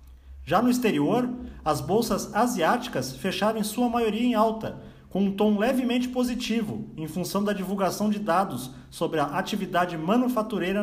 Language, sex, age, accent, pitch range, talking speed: Portuguese, male, 40-59, Brazilian, 180-225 Hz, 145 wpm